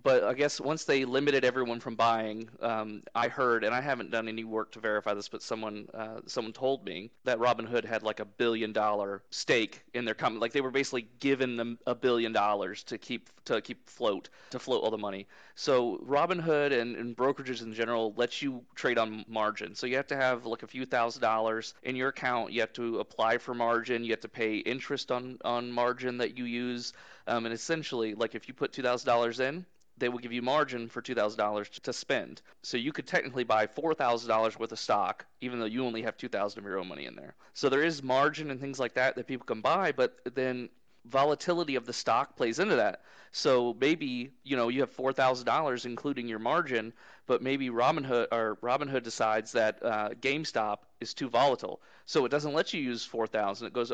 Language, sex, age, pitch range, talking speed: English, male, 30-49, 110-135 Hz, 210 wpm